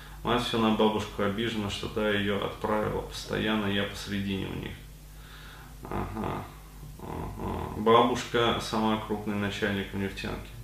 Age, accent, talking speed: 20-39, native, 125 wpm